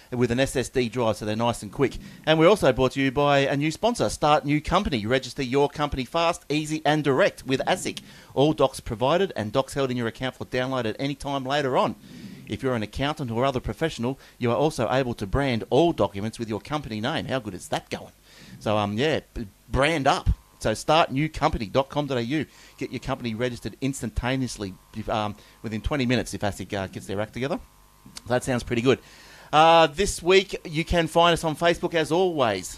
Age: 40-59